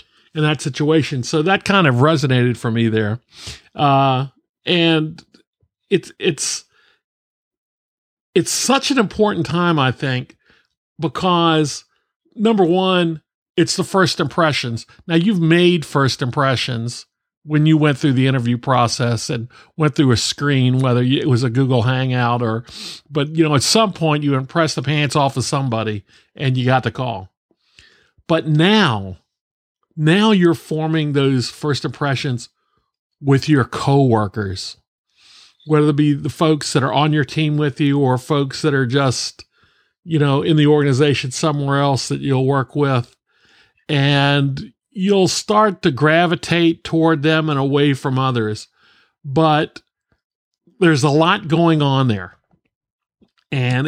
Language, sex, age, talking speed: English, male, 50-69, 145 wpm